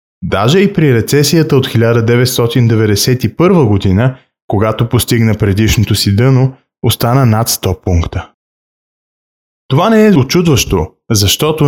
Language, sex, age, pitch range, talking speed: Bulgarian, male, 20-39, 110-150 Hz, 110 wpm